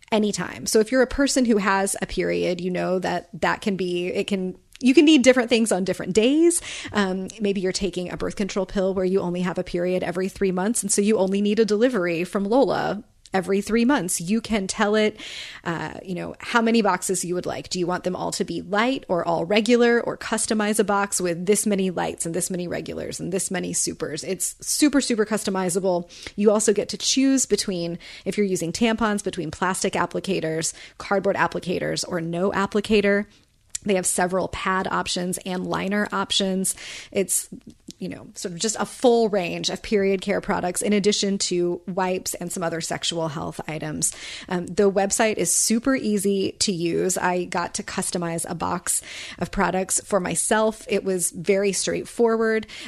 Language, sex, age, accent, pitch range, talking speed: English, female, 30-49, American, 180-215 Hz, 195 wpm